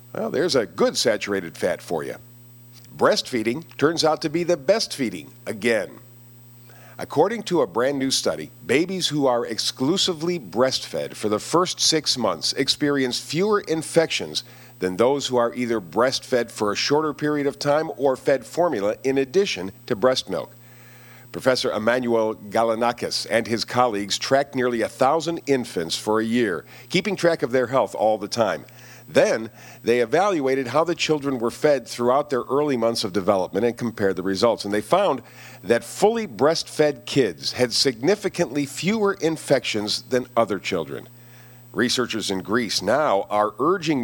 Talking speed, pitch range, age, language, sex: 155 wpm, 115-145 Hz, 50-69, English, male